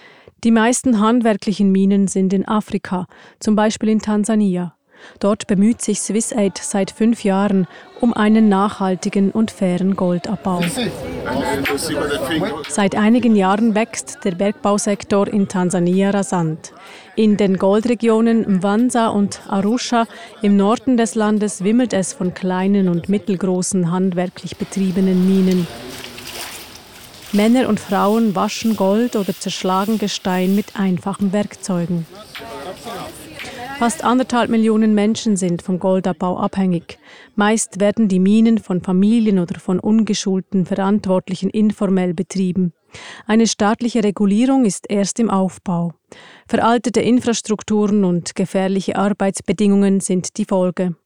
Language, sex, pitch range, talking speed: English, female, 190-220 Hz, 115 wpm